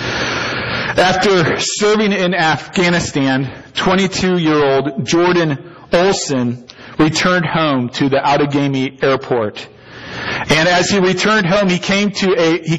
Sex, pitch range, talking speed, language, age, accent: male, 155-190 Hz, 110 wpm, English, 40-59, American